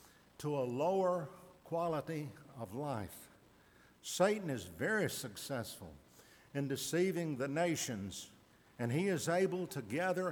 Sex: male